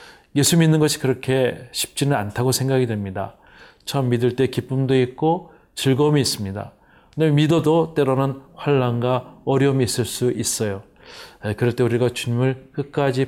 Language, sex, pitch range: Korean, male, 115-145 Hz